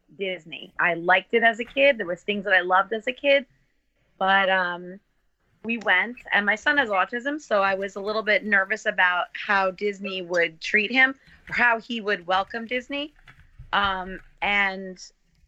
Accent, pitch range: American, 180-220 Hz